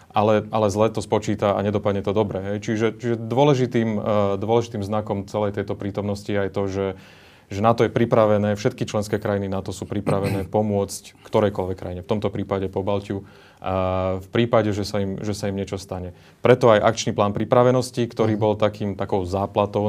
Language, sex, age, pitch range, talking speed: Slovak, male, 30-49, 100-110 Hz, 185 wpm